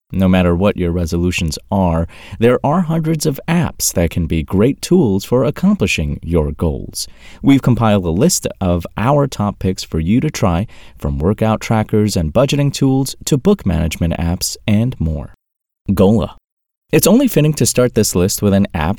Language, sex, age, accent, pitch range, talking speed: English, male, 30-49, American, 85-115 Hz, 175 wpm